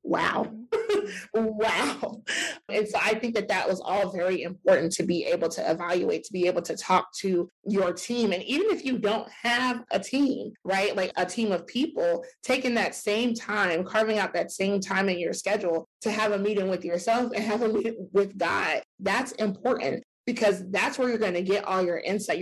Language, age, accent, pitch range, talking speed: English, 30-49, American, 185-245 Hz, 200 wpm